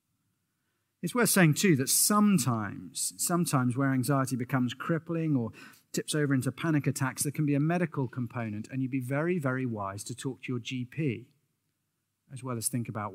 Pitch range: 115-145 Hz